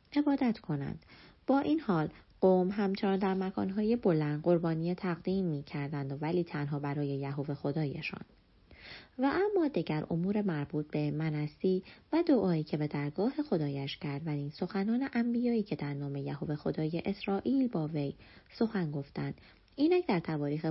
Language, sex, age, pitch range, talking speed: Persian, female, 30-49, 150-200 Hz, 150 wpm